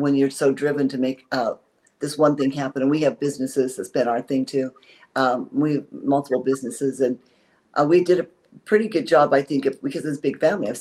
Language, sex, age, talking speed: English, female, 50-69, 230 wpm